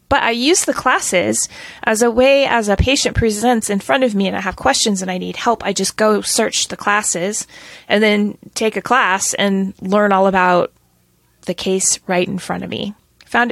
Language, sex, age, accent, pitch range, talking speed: English, female, 30-49, American, 200-255 Hz, 210 wpm